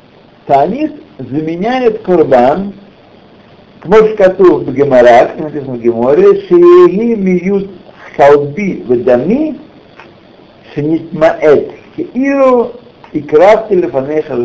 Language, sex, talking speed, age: Russian, male, 50 wpm, 60-79